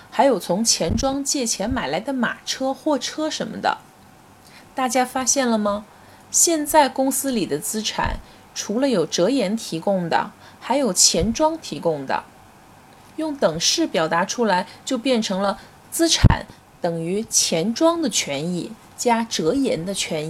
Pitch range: 190-270 Hz